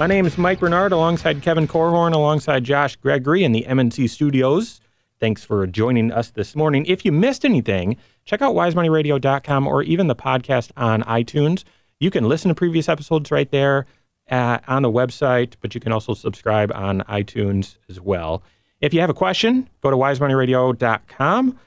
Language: English